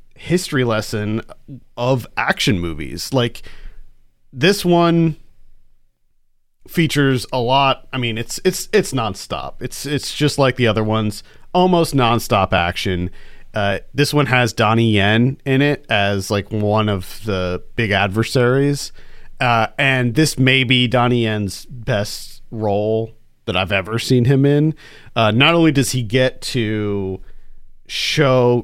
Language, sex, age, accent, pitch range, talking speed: English, male, 40-59, American, 105-140 Hz, 135 wpm